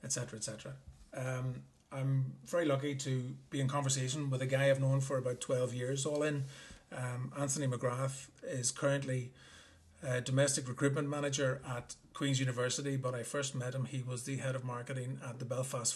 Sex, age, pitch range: male, 30-49, 125-140 Hz